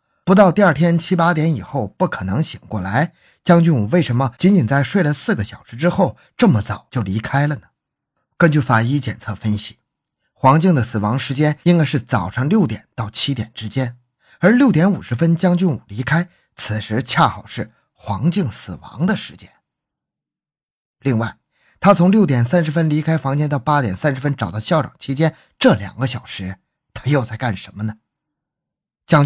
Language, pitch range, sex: Chinese, 115-170 Hz, male